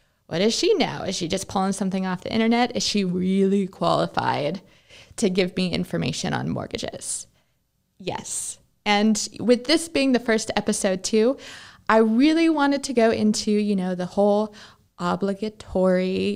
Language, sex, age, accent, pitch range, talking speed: English, female, 20-39, American, 195-250 Hz, 155 wpm